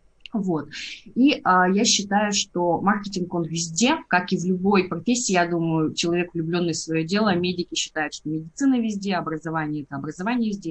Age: 20-39